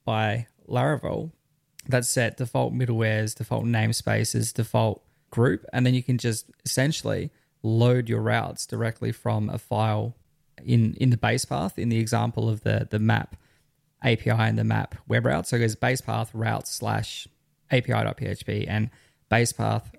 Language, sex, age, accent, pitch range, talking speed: English, male, 20-39, Australian, 115-130 Hz, 155 wpm